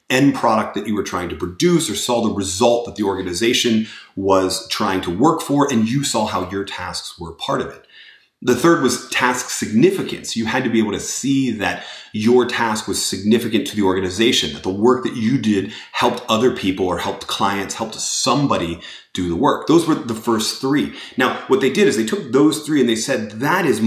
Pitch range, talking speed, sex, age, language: 105-135 Hz, 215 wpm, male, 30-49, English